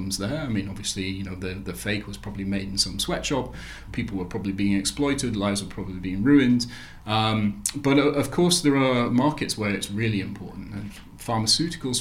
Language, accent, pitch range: English, British, 100-115 Hz